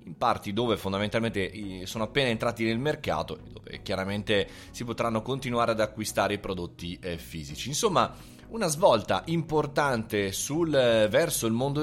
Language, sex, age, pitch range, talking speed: Italian, male, 30-49, 100-135 Hz, 130 wpm